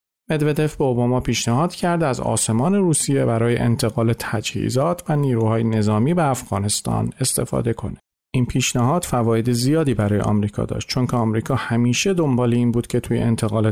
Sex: male